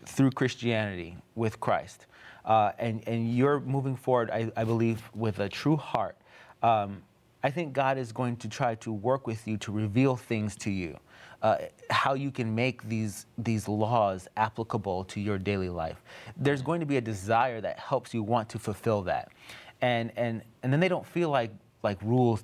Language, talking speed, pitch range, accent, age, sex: English, 185 wpm, 105-130 Hz, American, 30-49, male